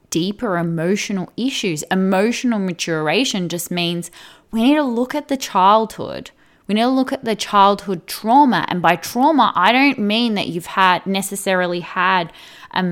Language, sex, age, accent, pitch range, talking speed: English, female, 10-29, Australian, 175-220 Hz, 160 wpm